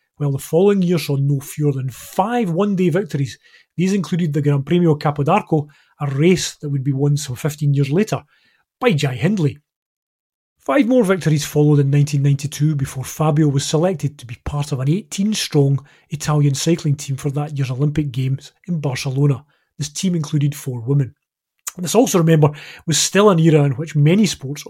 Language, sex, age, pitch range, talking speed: English, male, 30-49, 140-170 Hz, 175 wpm